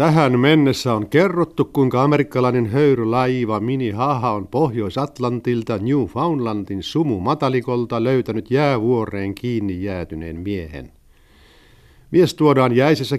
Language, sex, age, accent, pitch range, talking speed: Finnish, male, 60-79, native, 100-135 Hz, 95 wpm